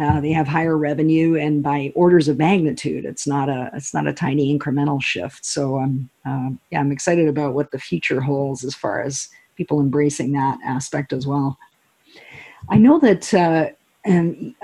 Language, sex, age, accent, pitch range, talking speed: English, female, 50-69, American, 140-165 Hz, 175 wpm